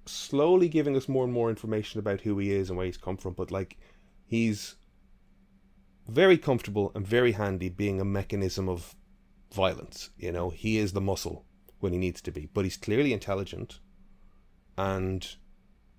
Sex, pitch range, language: male, 90-105 Hz, English